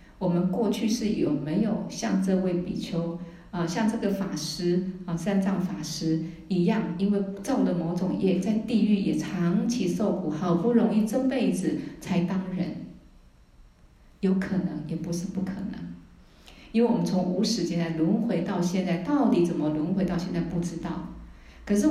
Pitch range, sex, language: 170-205 Hz, female, Chinese